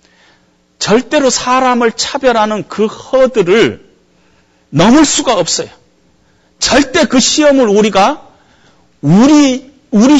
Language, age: Korean, 40-59